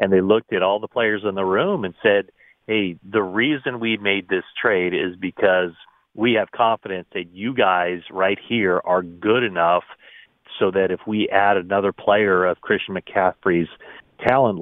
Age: 40-59